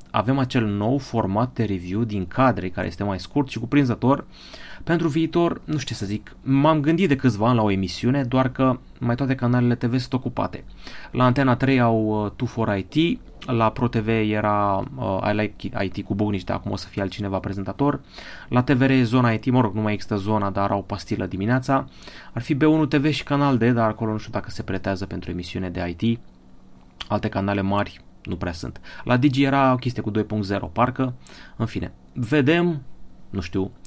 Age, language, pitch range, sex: 30-49, Romanian, 100-130 Hz, male